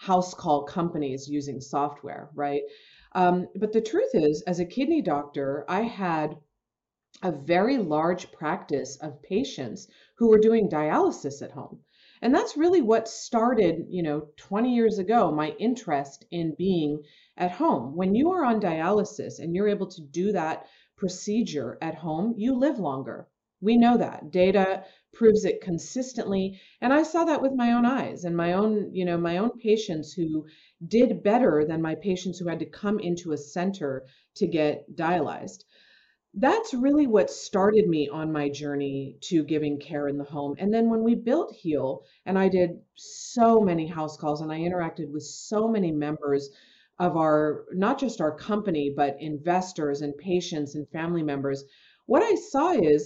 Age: 40-59